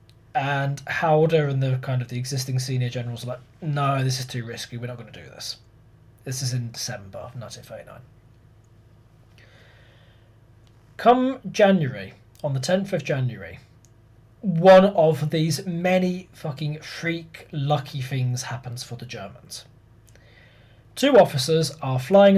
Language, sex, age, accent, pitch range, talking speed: English, male, 20-39, British, 115-155 Hz, 140 wpm